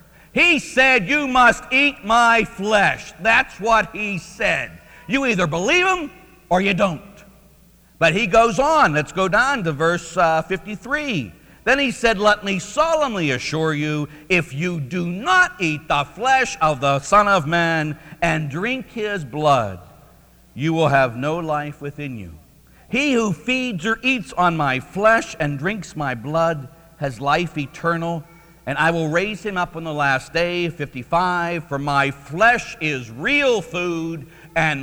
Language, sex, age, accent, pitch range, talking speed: English, male, 50-69, American, 135-195 Hz, 160 wpm